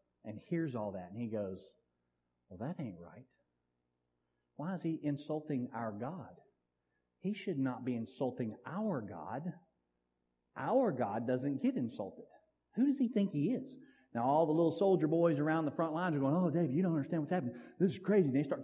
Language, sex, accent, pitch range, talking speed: English, male, American, 130-220 Hz, 195 wpm